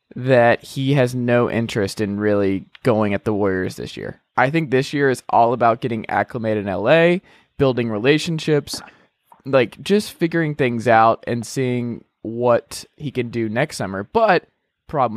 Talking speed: 160 wpm